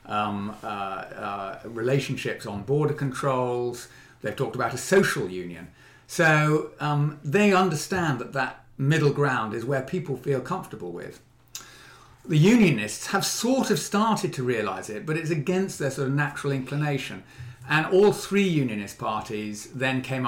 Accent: British